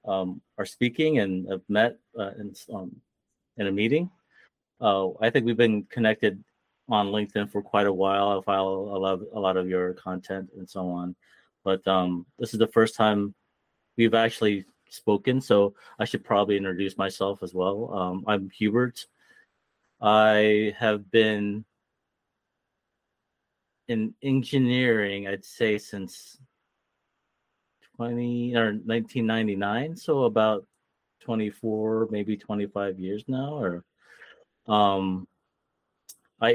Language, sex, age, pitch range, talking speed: English, male, 30-49, 95-115 Hz, 125 wpm